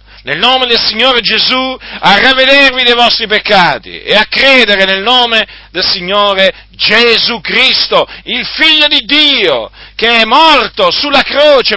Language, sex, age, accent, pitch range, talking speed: Italian, male, 50-69, native, 185-265 Hz, 145 wpm